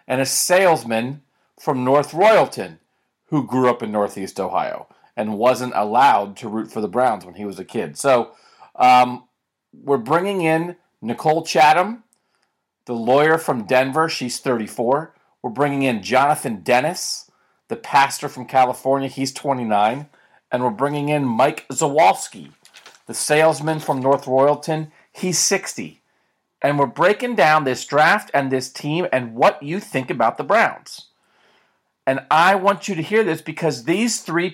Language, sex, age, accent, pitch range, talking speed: English, male, 40-59, American, 125-170 Hz, 155 wpm